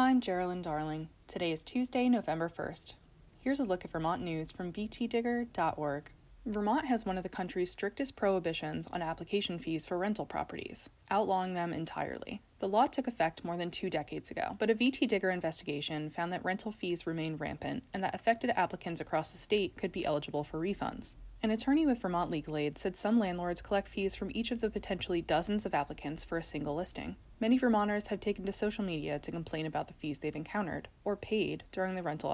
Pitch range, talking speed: 160-210 Hz, 200 wpm